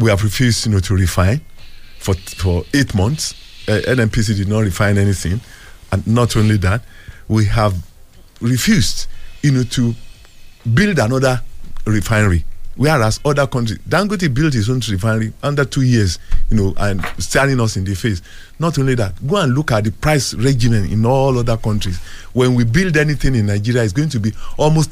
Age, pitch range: 50-69, 100-140 Hz